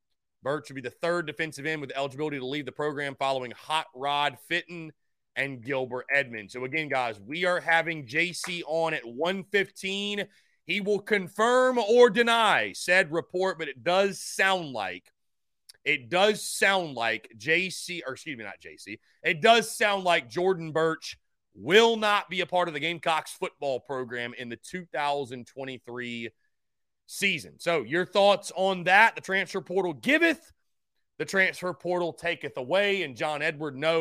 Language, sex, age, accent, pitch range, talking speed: English, male, 30-49, American, 140-190 Hz, 160 wpm